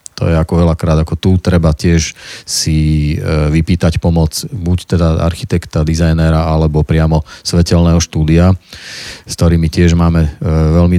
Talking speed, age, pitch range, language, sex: 130 wpm, 40-59, 80-90 Hz, Slovak, male